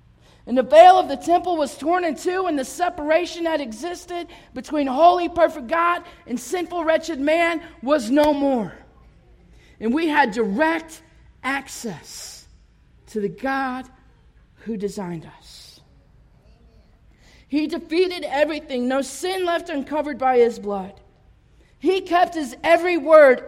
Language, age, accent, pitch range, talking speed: English, 40-59, American, 255-330 Hz, 135 wpm